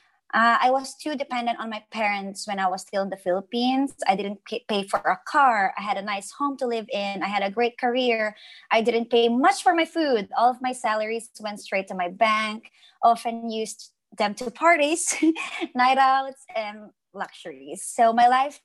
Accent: Filipino